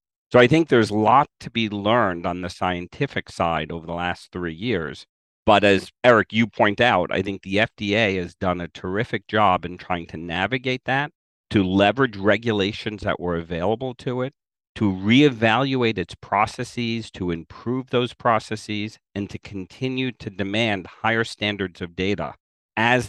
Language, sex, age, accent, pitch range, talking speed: English, male, 50-69, American, 95-120 Hz, 165 wpm